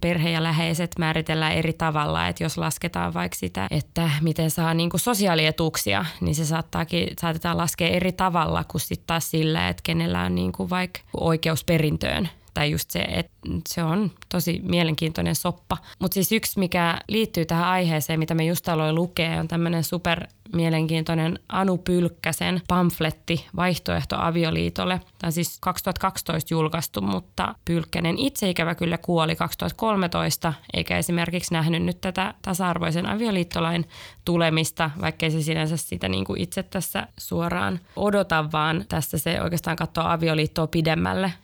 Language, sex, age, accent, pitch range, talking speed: Finnish, female, 20-39, native, 155-180 Hz, 140 wpm